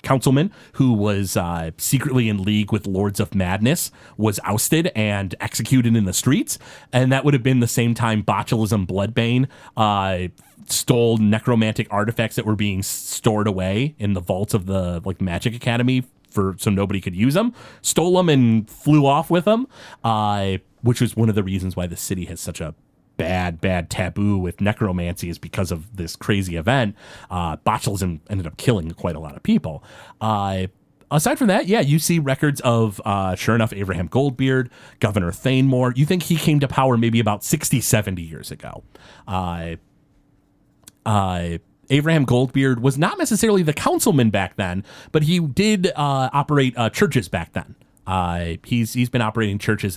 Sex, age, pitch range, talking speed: male, 30-49, 95-130 Hz, 175 wpm